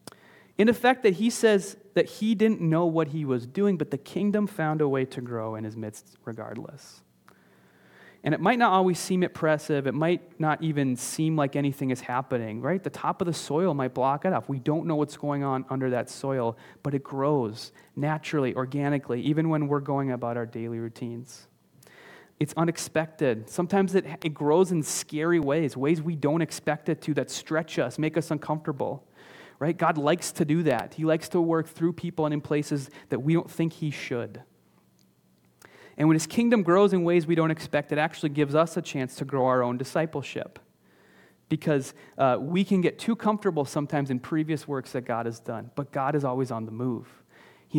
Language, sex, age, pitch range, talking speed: English, male, 30-49, 130-165 Hz, 200 wpm